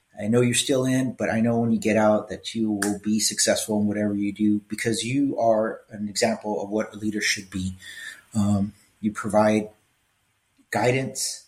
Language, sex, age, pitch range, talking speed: English, male, 30-49, 105-125 Hz, 190 wpm